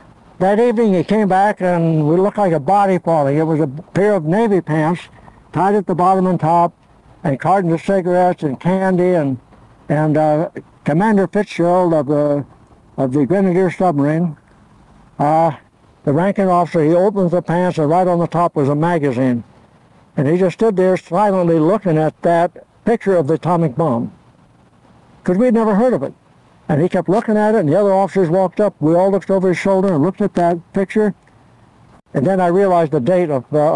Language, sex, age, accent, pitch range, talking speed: English, male, 60-79, American, 145-185 Hz, 195 wpm